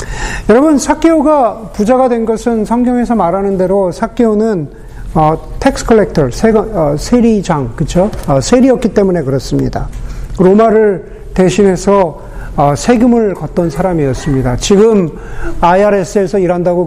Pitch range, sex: 165-230 Hz, male